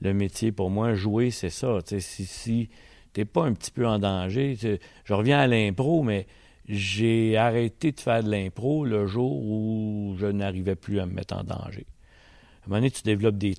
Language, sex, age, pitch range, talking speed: French, male, 60-79, 100-120 Hz, 205 wpm